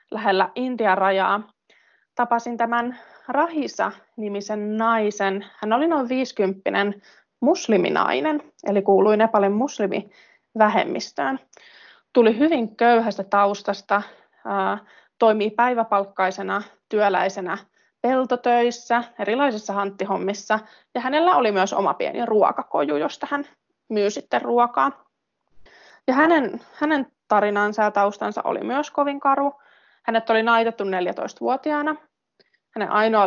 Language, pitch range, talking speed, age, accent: Finnish, 200-270 Hz, 95 wpm, 20-39, native